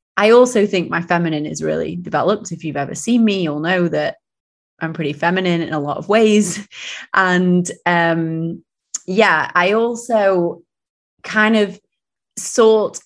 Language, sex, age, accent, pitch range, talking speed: English, female, 20-39, British, 165-200 Hz, 145 wpm